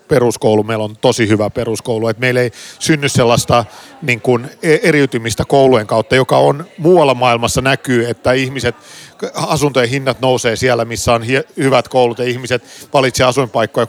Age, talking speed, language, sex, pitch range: 40-59, 150 wpm, Finnish, male, 115-140 Hz